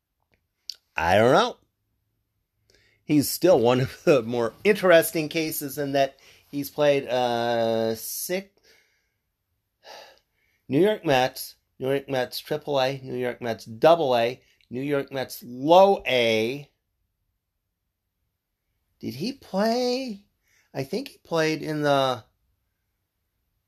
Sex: male